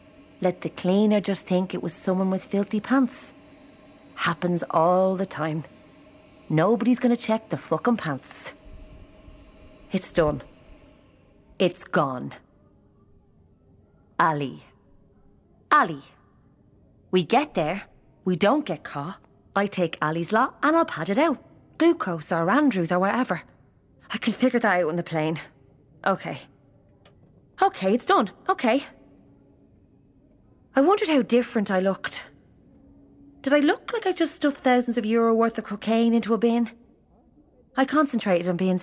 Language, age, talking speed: English, 30-49, 135 wpm